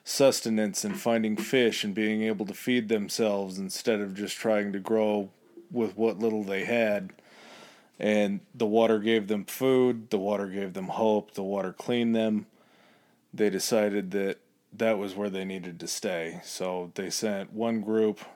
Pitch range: 95-110 Hz